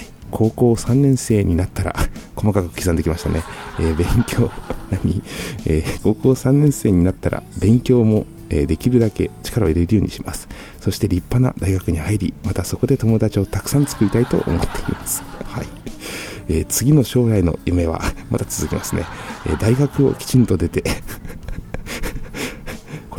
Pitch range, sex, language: 85-115 Hz, male, Japanese